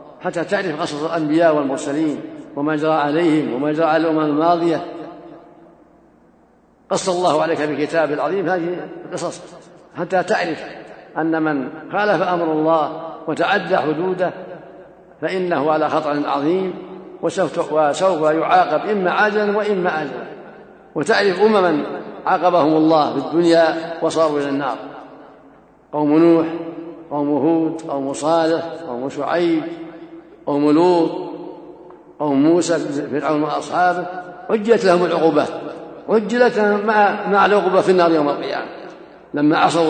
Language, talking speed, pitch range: Arabic, 115 wpm, 155-185 Hz